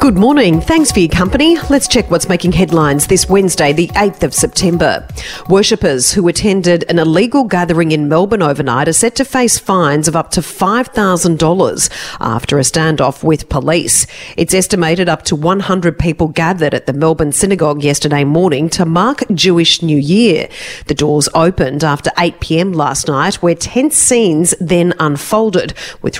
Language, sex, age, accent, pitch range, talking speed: English, female, 40-59, Australian, 160-210 Hz, 165 wpm